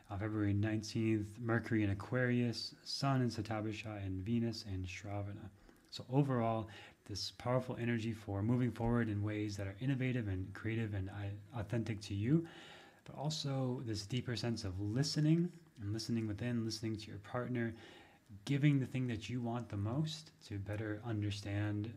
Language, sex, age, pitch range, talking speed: English, male, 30-49, 105-125 Hz, 155 wpm